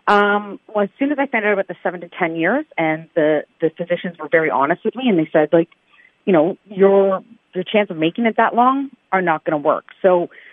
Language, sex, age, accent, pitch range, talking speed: English, female, 40-59, American, 160-205 Hz, 245 wpm